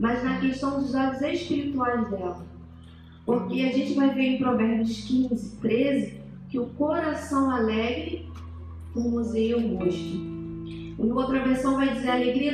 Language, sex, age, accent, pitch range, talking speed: Portuguese, female, 40-59, Brazilian, 200-275 Hz, 150 wpm